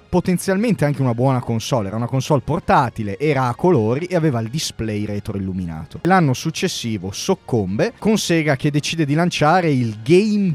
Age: 30-49